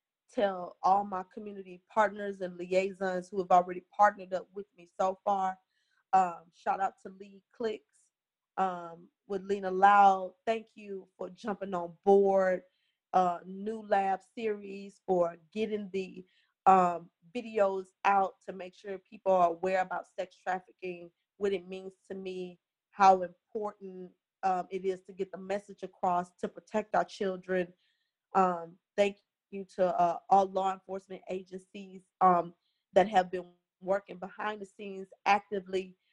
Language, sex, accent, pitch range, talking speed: English, female, American, 180-200 Hz, 150 wpm